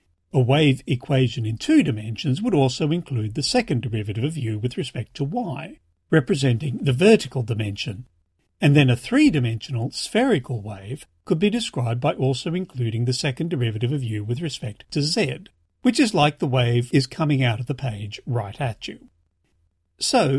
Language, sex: English, male